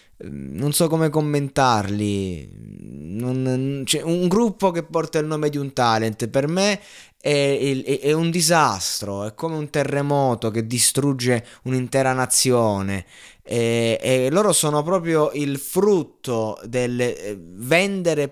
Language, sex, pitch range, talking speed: Italian, male, 125-165 Hz, 120 wpm